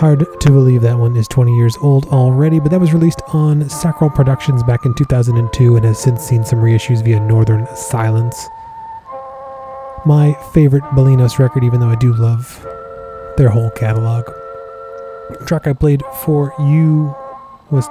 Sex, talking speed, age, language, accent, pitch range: male, 160 wpm, 20-39, English, American, 130-180 Hz